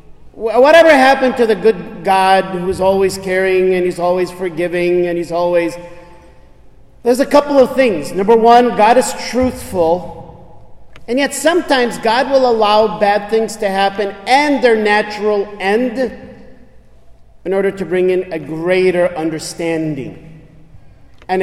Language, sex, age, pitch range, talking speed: English, male, 40-59, 185-235 Hz, 135 wpm